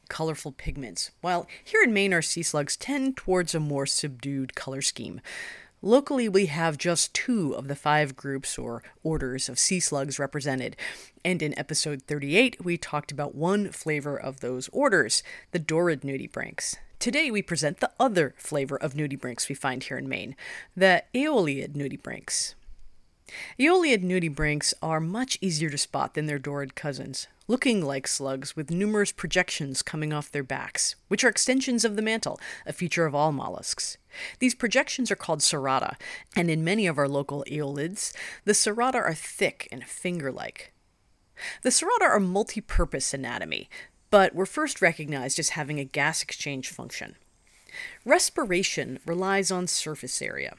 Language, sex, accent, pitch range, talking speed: English, female, American, 140-195 Hz, 155 wpm